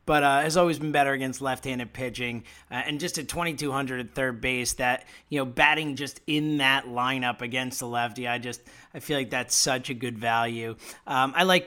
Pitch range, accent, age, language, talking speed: 125-175 Hz, American, 30-49, English, 210 wpm